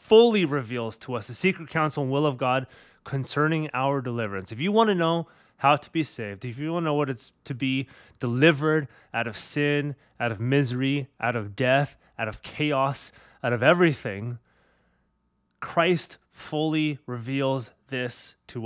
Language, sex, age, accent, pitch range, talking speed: English, male, 30-49, American, 125-160 Hz, 170 wpm